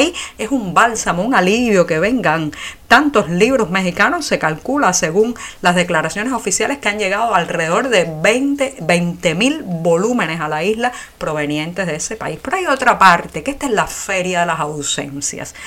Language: Spanish